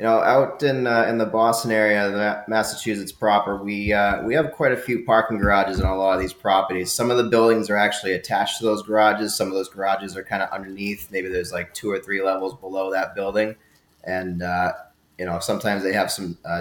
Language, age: English, 30-49